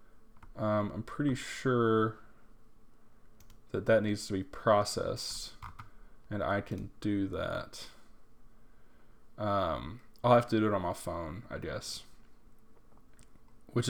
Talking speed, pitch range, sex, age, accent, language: 115 wpm, 105-115 Hz, male, 10-29, American, English